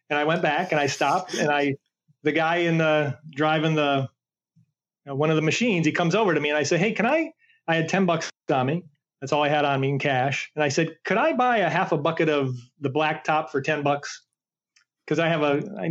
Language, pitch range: English, 150-185 Hz